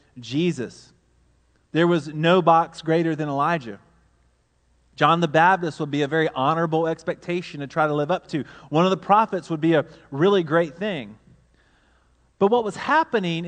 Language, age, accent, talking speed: English, 30-49, American, 165 wpm